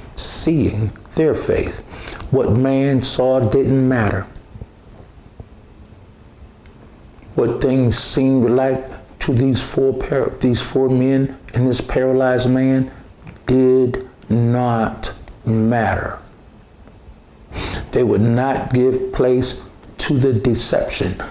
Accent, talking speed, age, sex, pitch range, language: American, 95 wpm, 60-79, male, 105-130 Hz, English